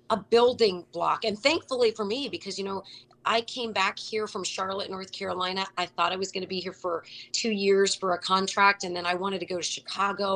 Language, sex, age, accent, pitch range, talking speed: English, female, 30-49, American, 185-265 Hz, 230 wpm